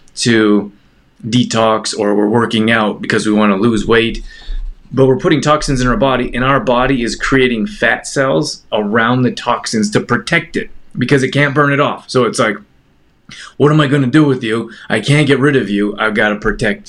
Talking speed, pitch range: 210 wpm, 105-125 Hz